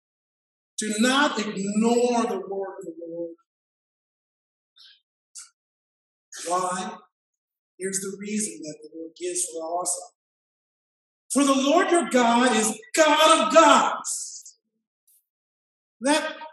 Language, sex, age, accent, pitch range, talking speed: English, male, 50-69, American, 220-290 Hz, 105 wpm